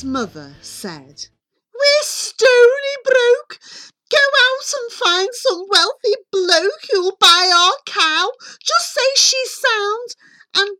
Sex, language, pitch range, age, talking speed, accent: female, English, 260-425 Hz, 40-59, 115 wpm, British